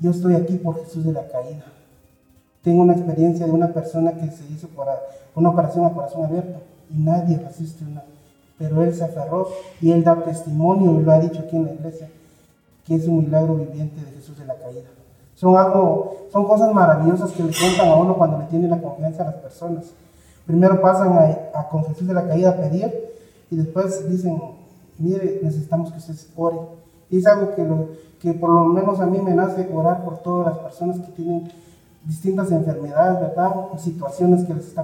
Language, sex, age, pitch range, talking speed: Spanish, male, 30-49, 160-180 Hz, 205 wpm